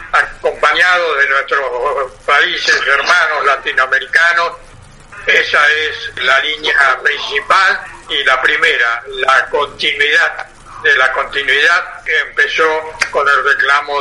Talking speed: 105 wpm